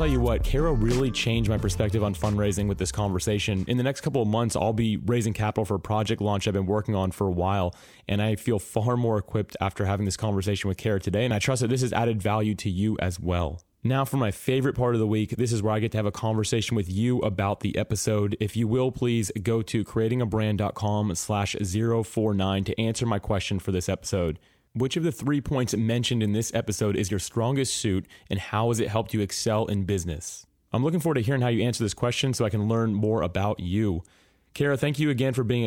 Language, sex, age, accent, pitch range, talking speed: English, male, 30-49, American, 100-120 Hz, 235 wpm